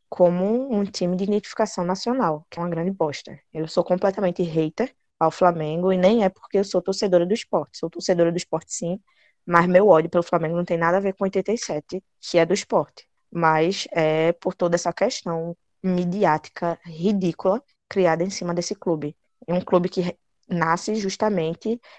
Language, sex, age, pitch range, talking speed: Portuguese, female, 20-39, 165-195 Hz, 185 wpm